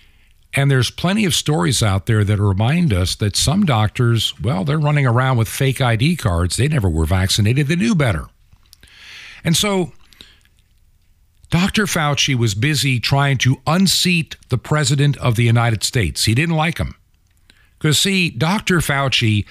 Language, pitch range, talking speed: English, 105-155 Hz, 155 wpm